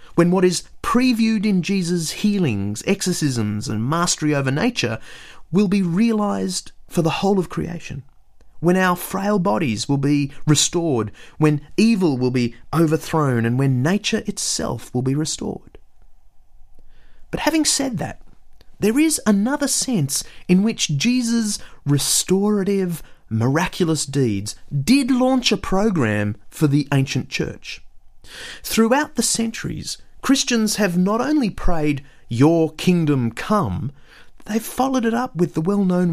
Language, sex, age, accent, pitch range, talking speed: English, male, 30-49, Australian, 140-215 Hz, 130 wpm